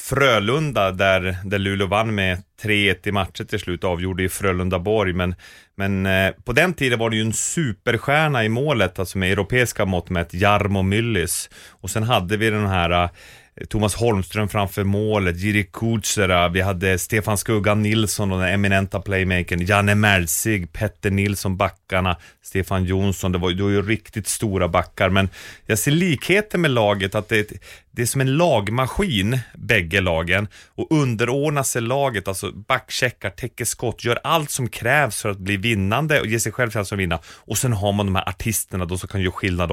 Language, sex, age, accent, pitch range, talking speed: English, male, 30-49, Swedish, 95-115 Hz, 180 wpm